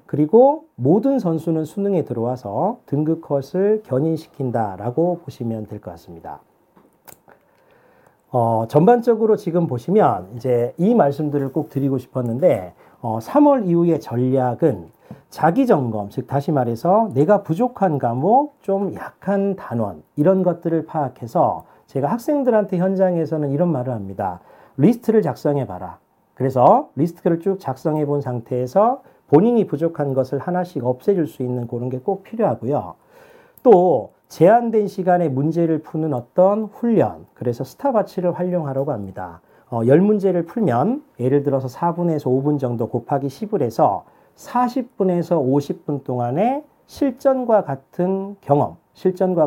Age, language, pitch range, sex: 40-59, Korean, 130-195 Hz, male